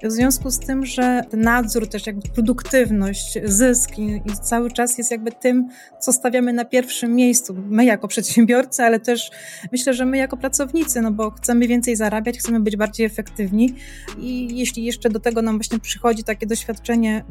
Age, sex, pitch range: 20-39, female, 220-245 Hz